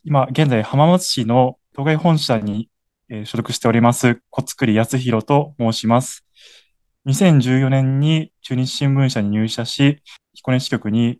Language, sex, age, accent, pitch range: Japanese, male, 20-39, native, 110-140 Hz